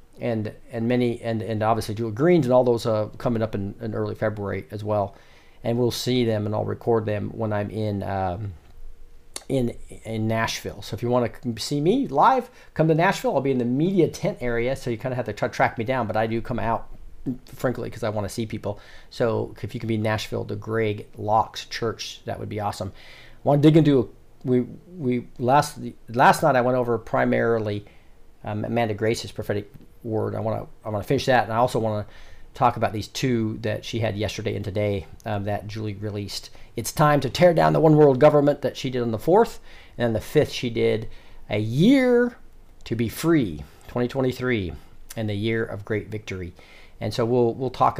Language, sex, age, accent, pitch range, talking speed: English, male, 40-59, American, 105-125 Hz, 215 wpm